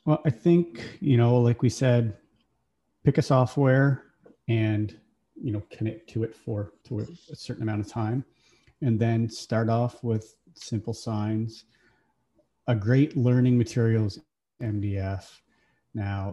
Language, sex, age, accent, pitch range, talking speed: English, male, 30-49, American, 105-125 Hz, 135 wpm